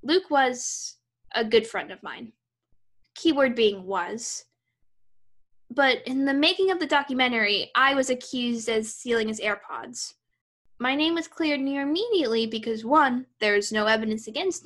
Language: English